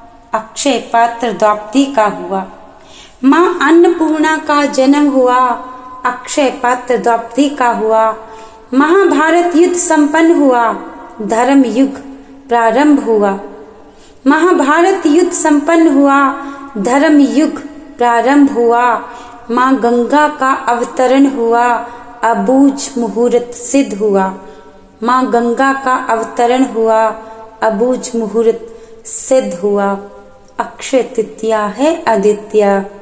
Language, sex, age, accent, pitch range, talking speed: Hindi, female, 30-49, native, 220-280 Hz, 95 wpm